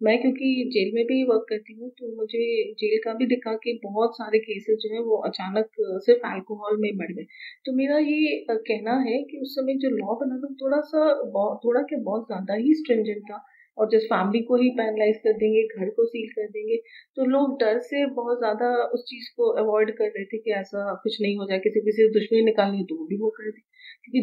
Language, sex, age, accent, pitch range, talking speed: Hindi, female, 30-49, native, 215-260 Hz, 230 wpm